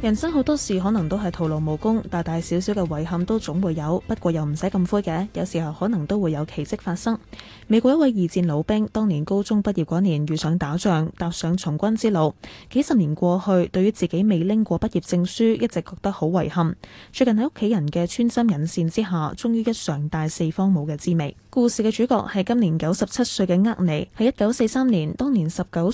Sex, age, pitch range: female, 10-29, 170-220 Hz